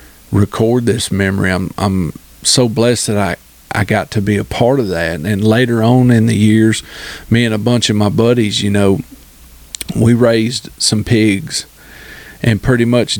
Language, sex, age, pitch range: English, male, 40-59, 95-115 Hz